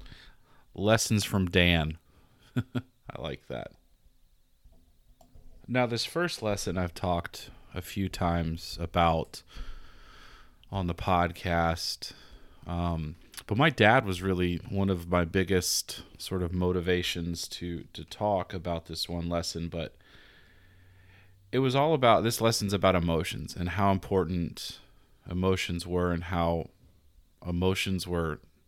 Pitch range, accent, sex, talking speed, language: 85-100 Hz, American, male, 120 wpm, English